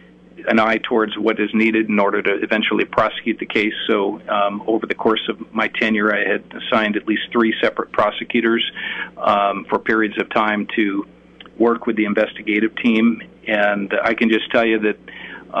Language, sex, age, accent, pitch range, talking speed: English, male, 40-59, American, 105-115 Hz, 180 wpm